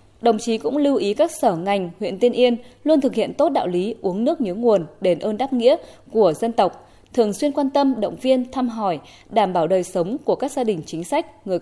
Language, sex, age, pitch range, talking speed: Vietnamese, female, 20-39, 190-255 Hz, 245 wpm